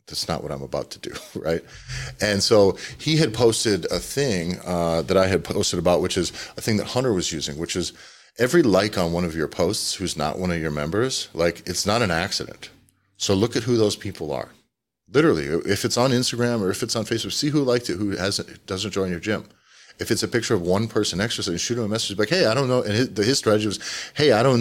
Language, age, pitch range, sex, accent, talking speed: English, 40-59, 90-115 Hz, male, American, 245 wpm